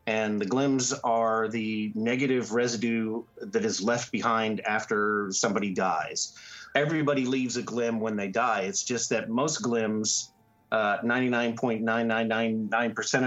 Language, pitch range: English, 110-125 Hz